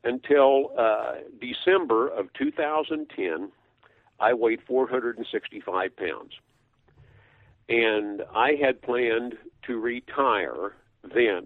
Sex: male